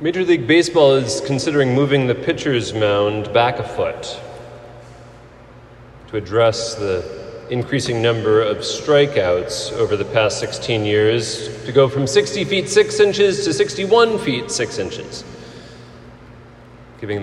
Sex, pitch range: male, 120-190 Hz